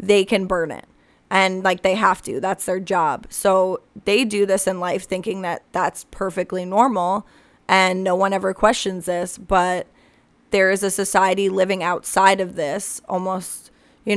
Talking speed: 170 wpm